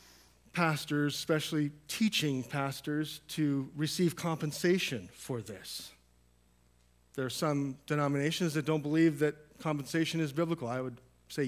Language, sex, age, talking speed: English, male, 40-59, 120 wpm